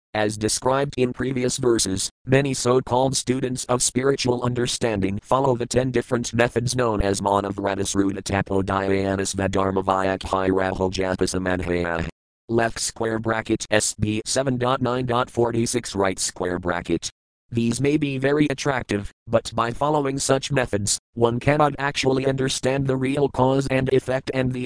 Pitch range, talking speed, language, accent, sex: 95-125 Hz, 125 wpm, English, American, male